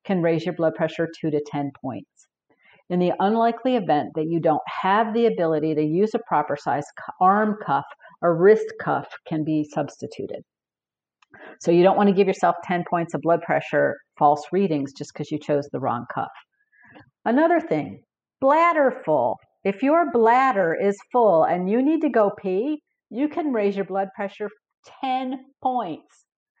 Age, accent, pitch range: 50-69, American, 160-245 Hz